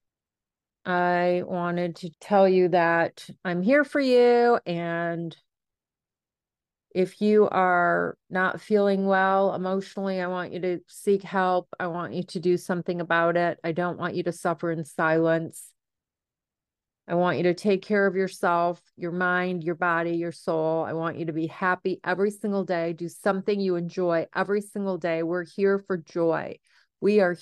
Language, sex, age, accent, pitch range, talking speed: English, female, 40-59, American, 175-195 Hz, 165 wpm